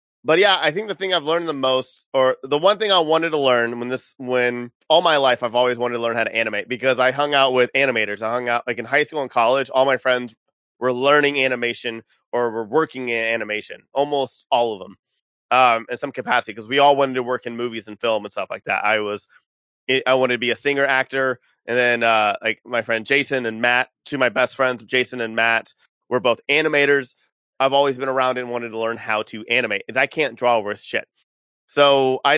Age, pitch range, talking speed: 30-49, 115-140 Hz, 235 wpm